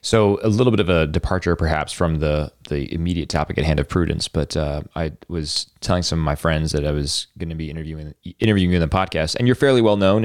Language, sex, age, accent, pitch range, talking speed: English, male, 20-39, American, 80-90 Hz, 250 wpm